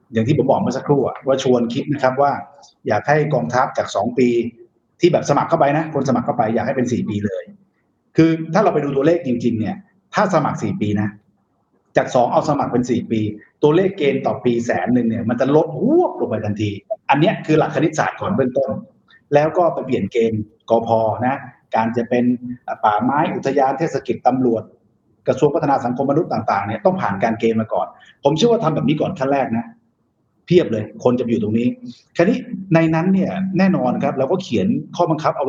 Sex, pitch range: male, 120-185 Hz